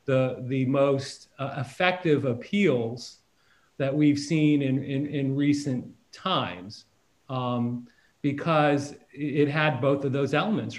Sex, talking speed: male, 120 wpm